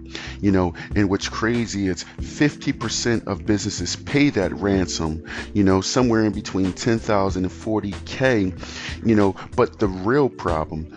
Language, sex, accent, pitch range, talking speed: English, male, American, 85-105 Hz, 140 wpm